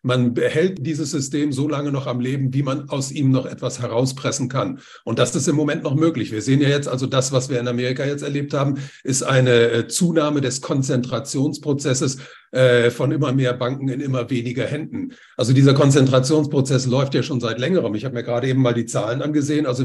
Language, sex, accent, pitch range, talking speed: German, male, German, 125-145 Hz, 205 wpm